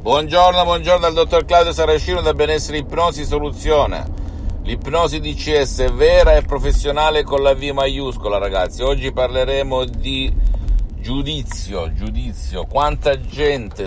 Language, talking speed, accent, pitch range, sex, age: Italian, 120 wpm, native, 80-130 Hz, male, 50-69